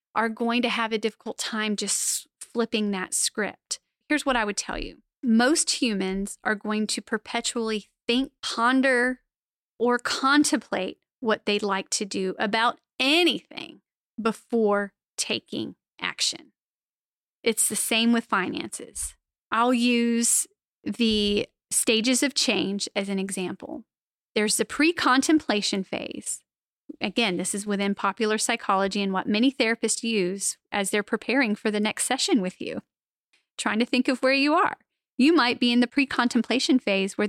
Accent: American